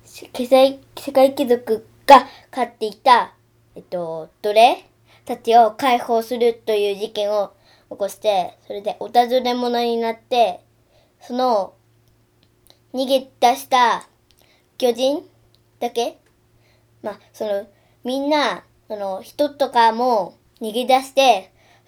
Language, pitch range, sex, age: Japanese, 210-260 Hz, male, 20-39